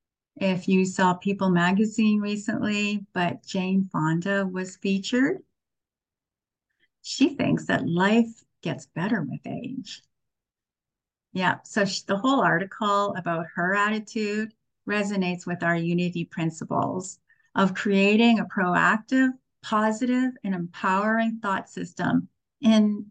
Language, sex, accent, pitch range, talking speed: English, female, American, 175-225 Hz, 110 wpm